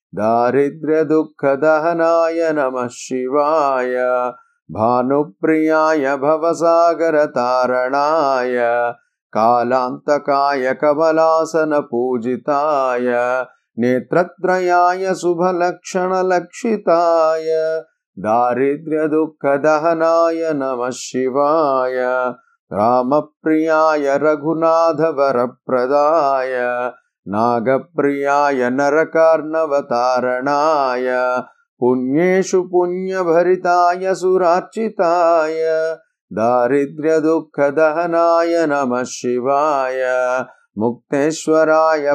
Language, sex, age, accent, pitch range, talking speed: Telugu, male, 30-49, native, 125-165 Hz, 40 wpm